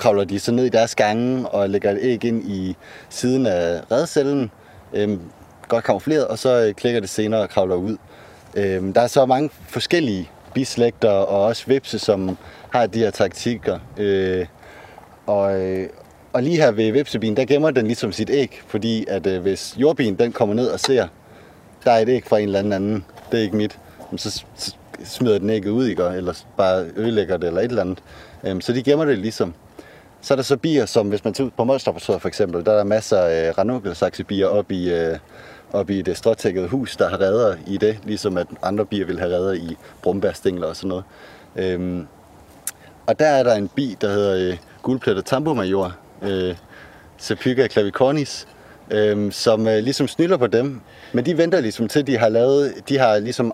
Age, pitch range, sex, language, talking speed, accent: 30-49, 95-125 Hz, male, Danish, 195 wpm, native